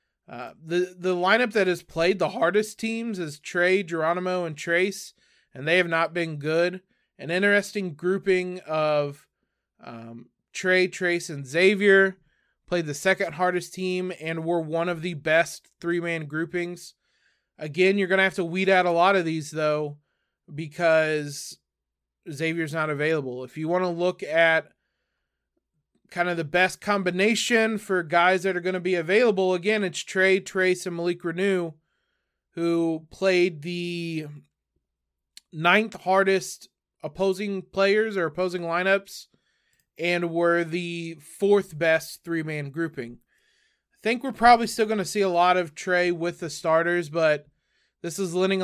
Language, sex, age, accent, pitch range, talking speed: English, male, 20-39, American, 160-190 Hz, 150 wpm